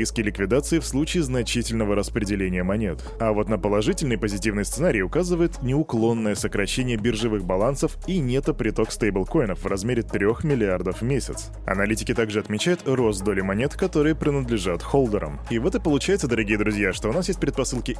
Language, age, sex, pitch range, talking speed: Russian, 20-39, male, 105-135 Hz, 160 wpm